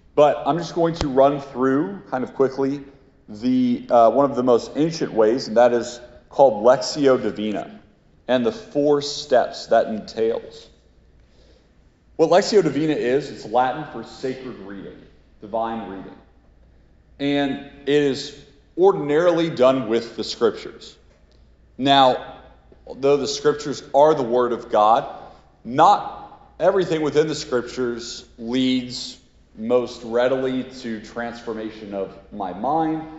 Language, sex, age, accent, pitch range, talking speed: English, male, 40-59, American, 115-145 Hz, 130 wpm